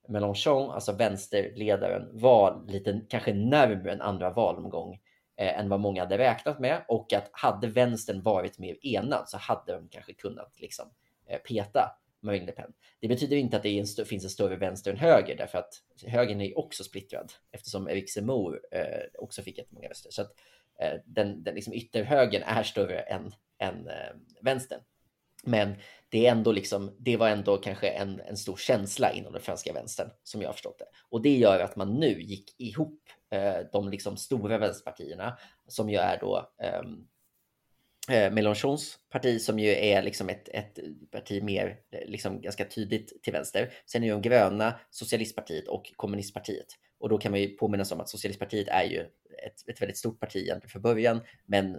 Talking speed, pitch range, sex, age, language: 185 wpm, 100-125 Hz, male, 30-49, Swedish